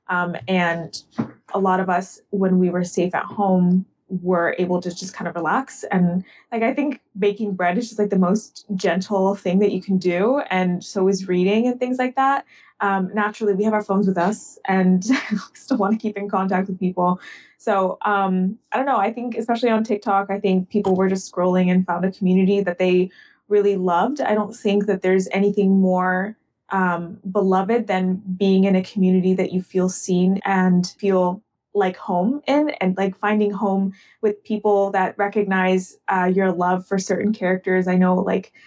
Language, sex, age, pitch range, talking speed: English, female, 20-39, 185-210 Hz, 195 wpm